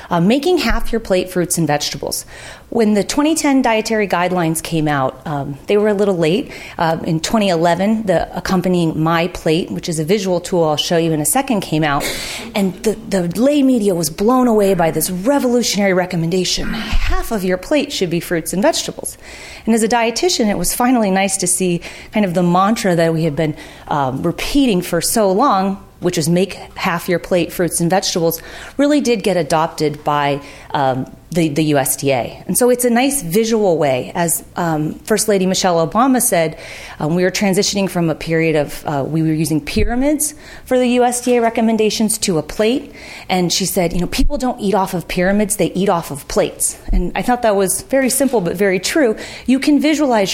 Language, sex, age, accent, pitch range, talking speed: English, female, 30-49, American, 170-225 Hz, 205 wpm